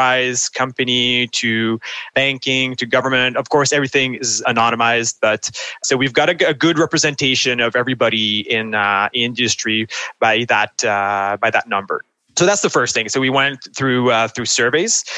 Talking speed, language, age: 160 wpm, English, 20-39